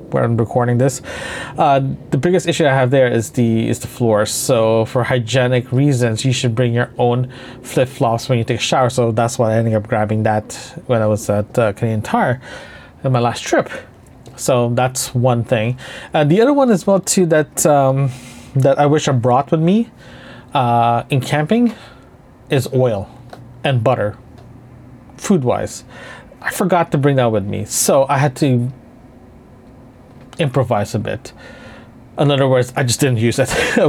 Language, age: English, 30-49